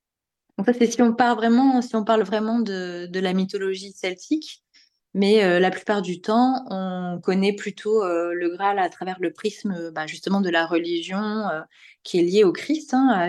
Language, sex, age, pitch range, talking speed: French, female, 20-39, 170-220 Hz, 205 wpm